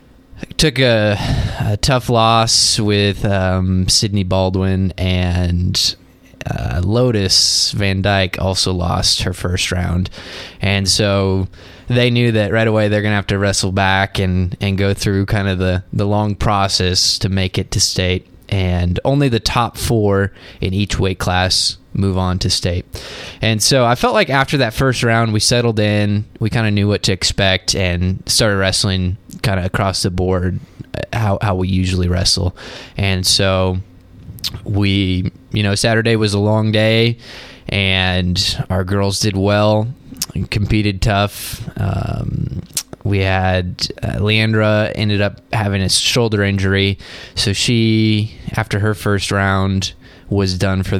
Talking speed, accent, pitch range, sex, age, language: 155 wpm, American, 95-110 Hz, male, 20-39, English